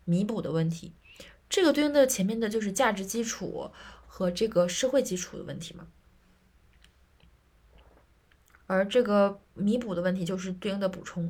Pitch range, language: 175-235 Hz, Chinese